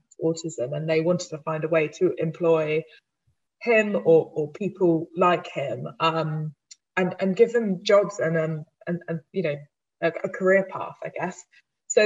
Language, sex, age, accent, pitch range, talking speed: English, female, 20-39, British, 165-190 Hz, 175 wpm